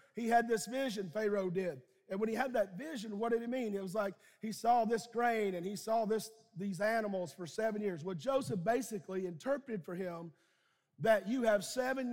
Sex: male